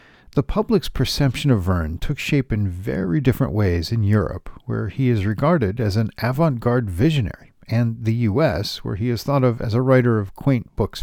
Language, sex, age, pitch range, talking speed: English, male, 50-69, 105-140 Hz, 190 wpm